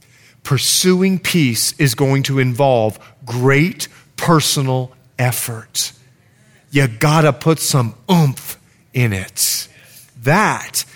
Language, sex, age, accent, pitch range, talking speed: English, male, 40-59, American, 125-190 Hz, 95 wpm